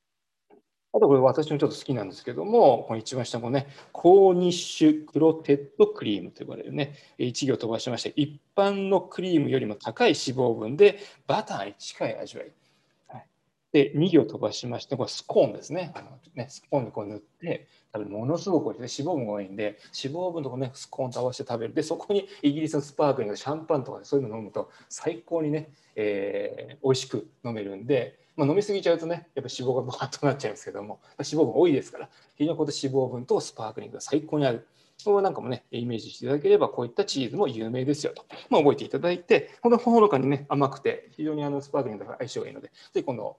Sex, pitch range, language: male, 125-165 Hz, Japanese